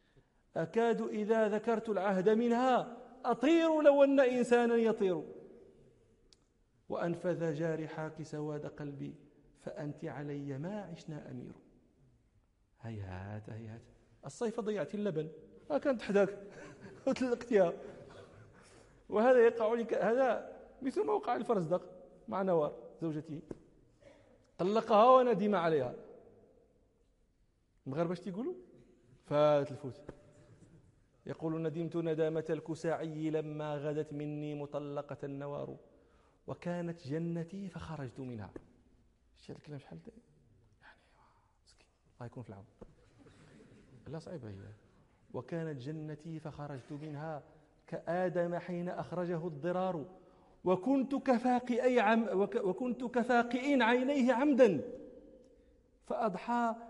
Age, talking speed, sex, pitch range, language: 40-59, 85 wpm, male, 150-225 Hz, Danish